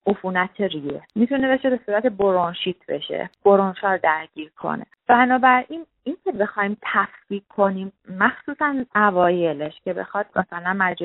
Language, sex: Persian, female